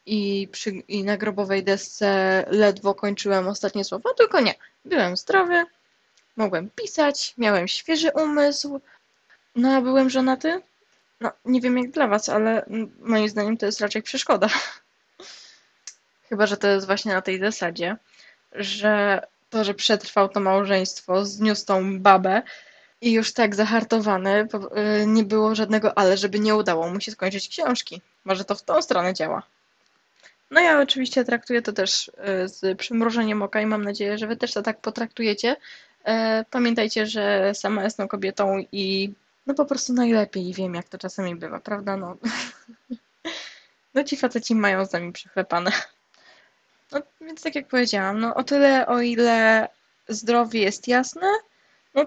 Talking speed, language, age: 150 wpm, Polish, 10-29